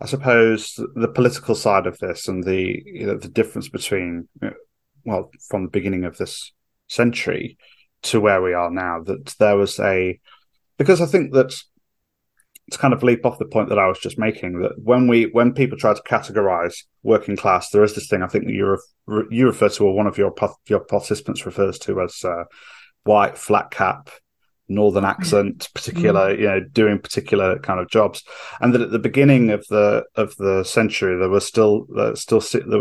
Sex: male